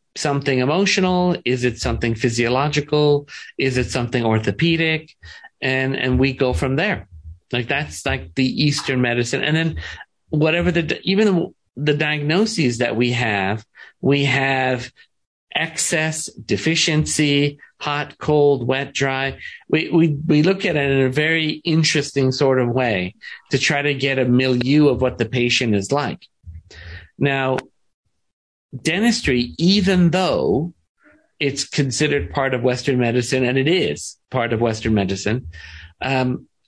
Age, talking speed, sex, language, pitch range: 40-59, 135 wpm, male, English, 125-155 Hz